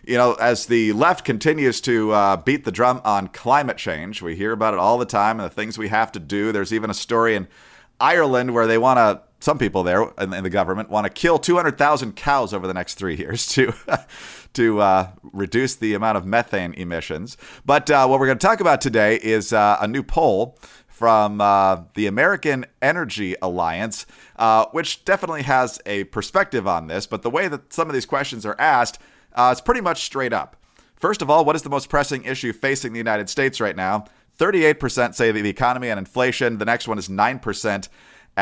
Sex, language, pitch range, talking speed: male, English, 100-130 Hz, 210 wpm